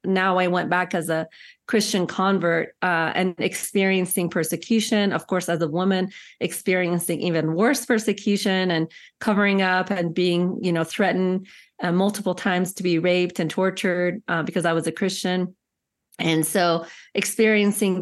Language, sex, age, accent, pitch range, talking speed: English, female, 30-49, American, 175-205 Hz, 155 wpm